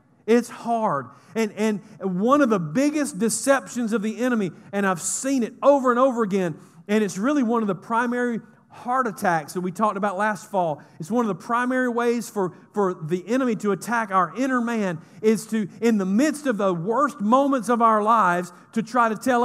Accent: American